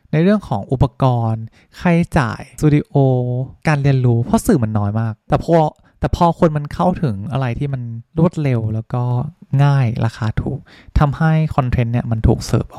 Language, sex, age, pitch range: Thai, male, 20-39, 115-155 Hz